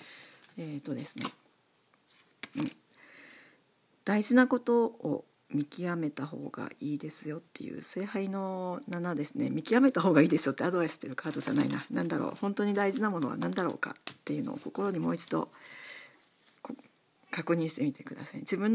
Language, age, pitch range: Japanese, 40-59, 155-225 Hz